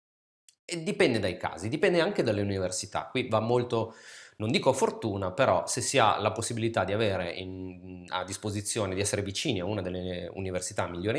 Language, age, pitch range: Italian, 30-49, 100-130 Hz